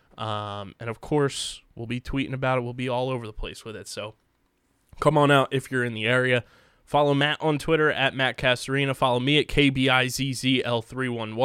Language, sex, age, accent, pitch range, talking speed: English, male, 20-39, American, 115-140 Hz, 190 wpm